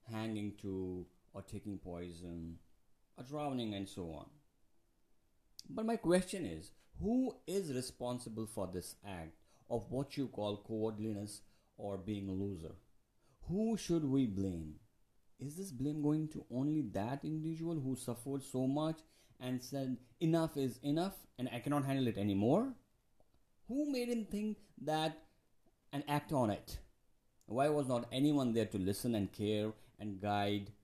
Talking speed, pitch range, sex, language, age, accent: 150 wpm, 100-145 Hz, male, English, 50-69, Indian